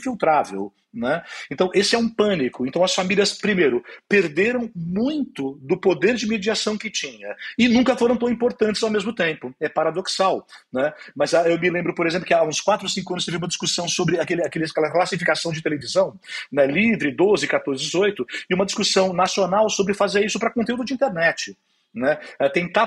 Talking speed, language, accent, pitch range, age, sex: 185 wpm, Portuguese, Brazilian, 170-215 Hz, 40-59, male